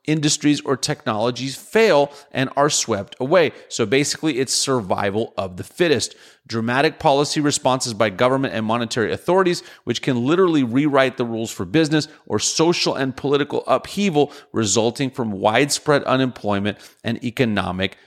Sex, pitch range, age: male, 115-150 Hz, 40-59